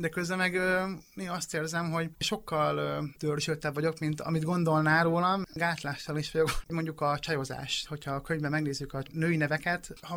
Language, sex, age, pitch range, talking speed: Hungarian, male, 30-49, 145-180 Hz, 160 wpm